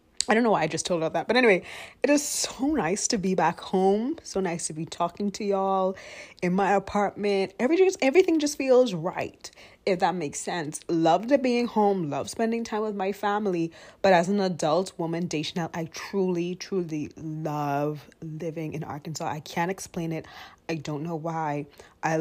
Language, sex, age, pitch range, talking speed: English, female, 20-39, 160-210 Hz, 190 wpm